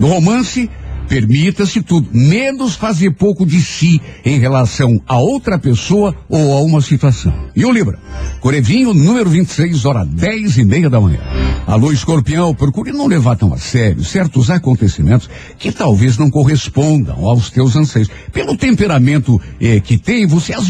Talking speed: 155 wpm